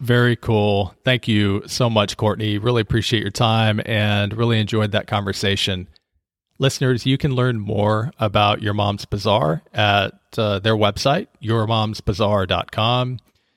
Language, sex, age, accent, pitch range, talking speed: English, male, 40-59, American, 100-115 Hz, 135 wpm